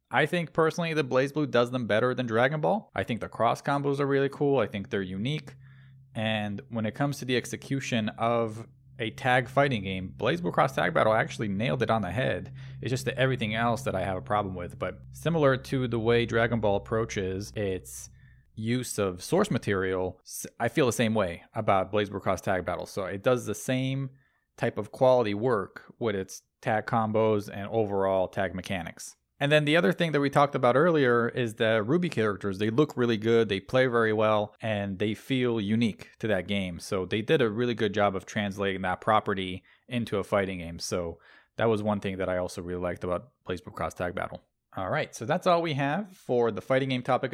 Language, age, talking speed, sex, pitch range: English, 20-39, 215 wpm, male, 105-135 Hz